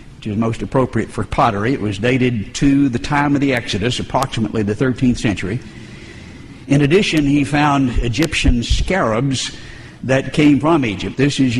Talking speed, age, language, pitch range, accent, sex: 160 wpm, 60-79, Polish, 110-140 Hz, American, male